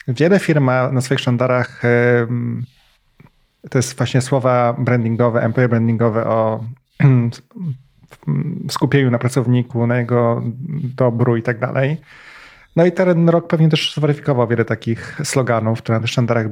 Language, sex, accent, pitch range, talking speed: Polish, male, native, 120-140 Hz, 125 wpm